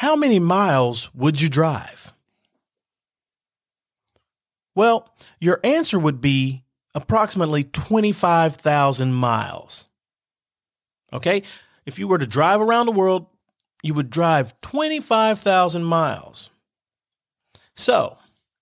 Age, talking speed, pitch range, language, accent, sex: 40-59, 95 wpm, 135-200 Hz, English, American, male